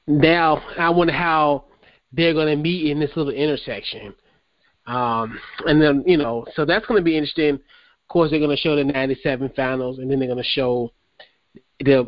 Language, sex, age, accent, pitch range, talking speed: English, male, 30-49, American, 130-180 Hz, 195 wpm